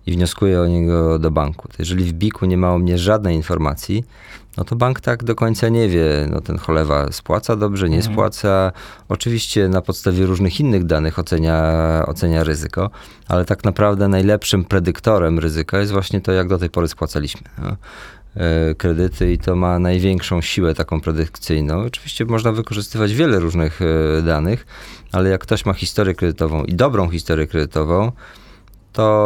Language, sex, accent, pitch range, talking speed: Polish, male, native, 80-100 Hz, 165 wpm